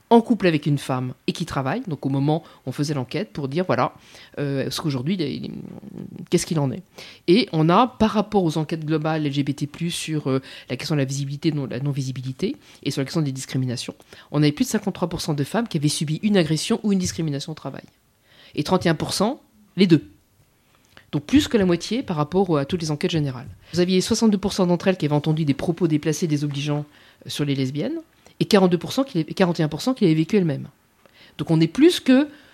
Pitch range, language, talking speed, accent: 145-195 Hz, French, 210 wpm, French